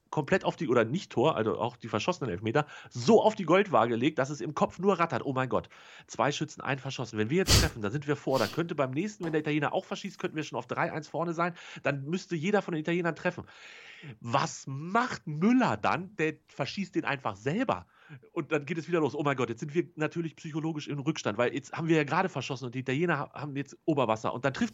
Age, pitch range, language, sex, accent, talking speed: 40-59, 150-200 Hz, German, male, German, 245 wpm